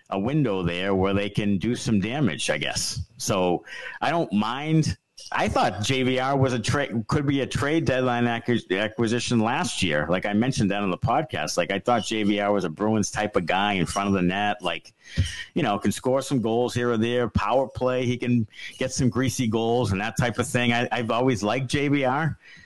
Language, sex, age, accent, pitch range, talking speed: English, male, 50-69, American, 105-135 Hz, 210 wpm